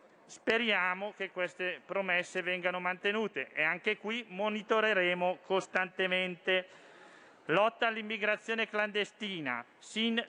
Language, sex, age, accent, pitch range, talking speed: Italian, male, 40-59, native, 170-205 Hz, 85 wpm